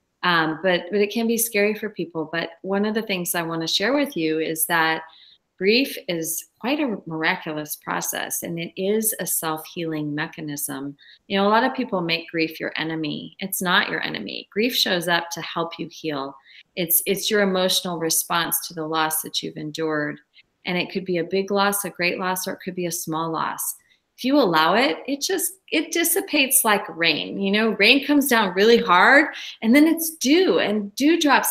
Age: 30-49